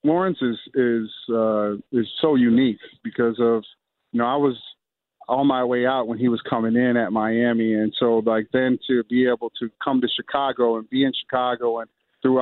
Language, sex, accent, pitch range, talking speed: English, male, American, 120-145 Hz, 200 wpm